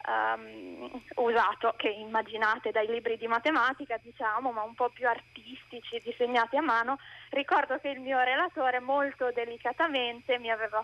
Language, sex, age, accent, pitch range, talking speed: Italian, female, 20-39, native, 225-270 Hz, 140 wpm